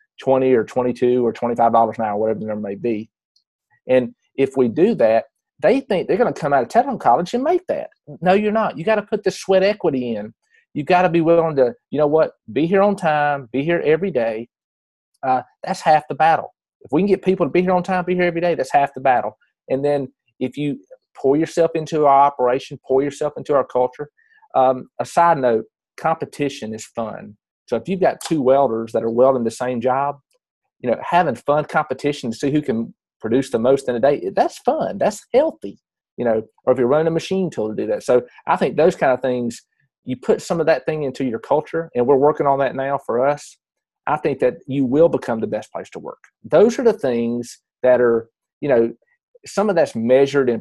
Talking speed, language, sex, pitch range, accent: 230 wpm, English, male, 125-175 Hz, American